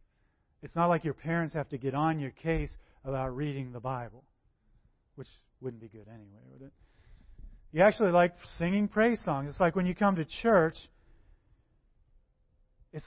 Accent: American